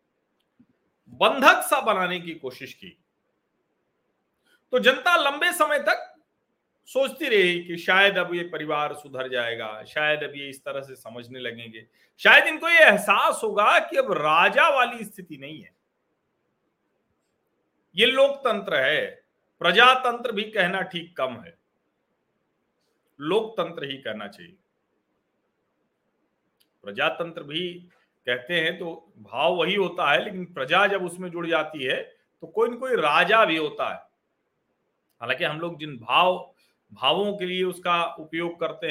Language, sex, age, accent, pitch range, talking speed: Hindi, male, 50-69, native, 160-270 Hz, 135 wpm